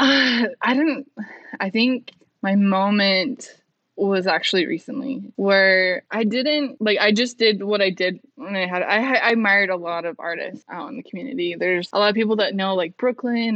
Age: 10-29